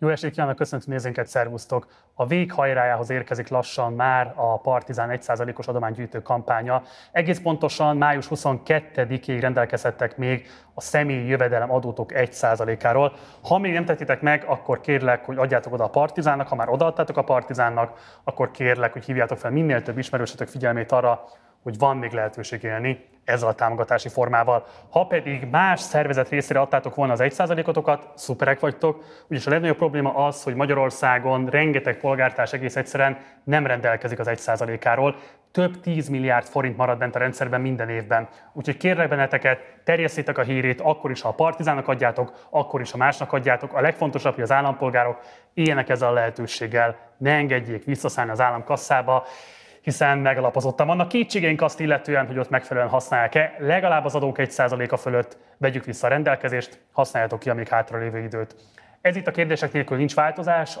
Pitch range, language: 120-145 Hz, Hungarian